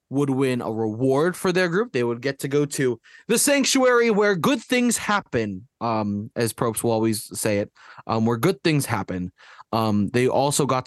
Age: 20-39